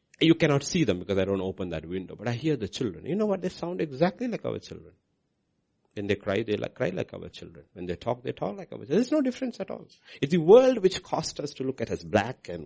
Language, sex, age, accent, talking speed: English, male, 60-79, Indian, 270 wpm